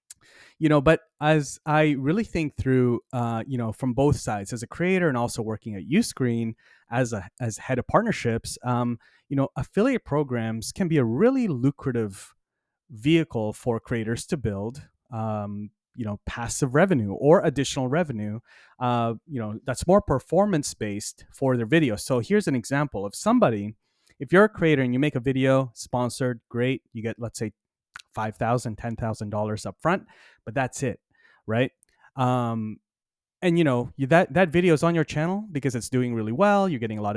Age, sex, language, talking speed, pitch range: 30-49, male, English, 180 wpm, 115-160 Hz